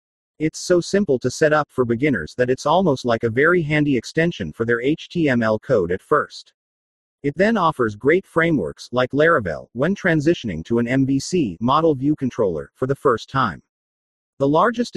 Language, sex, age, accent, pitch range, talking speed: English, male, 40-59, American, 120-160 Hz, 170 wpm